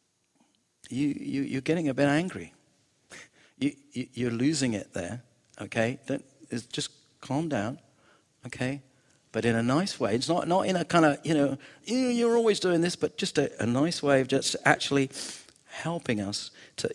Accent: British